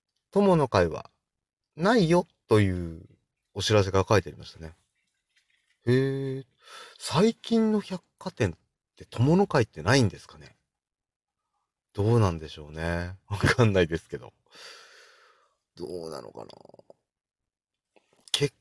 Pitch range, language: 95-160 Hz, Japanese